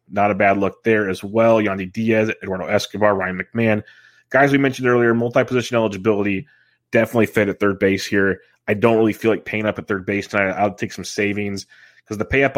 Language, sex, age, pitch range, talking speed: English, male, 30-49, 95-115 Hz, 205 wpm